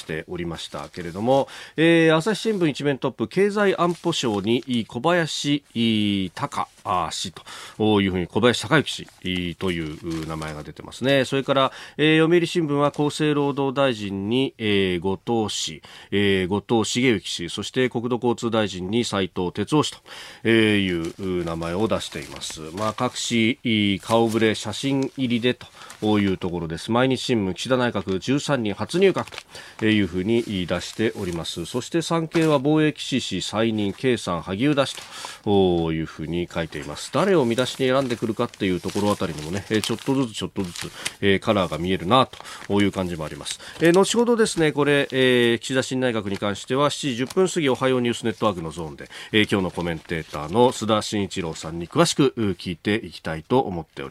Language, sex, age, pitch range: Japanese, male, 40-59, 100-135 Hz